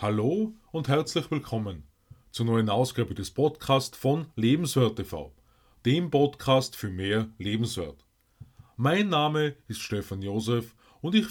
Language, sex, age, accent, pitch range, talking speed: German, male, 30-49, Austrian, 110-150 Hz, 120 wpm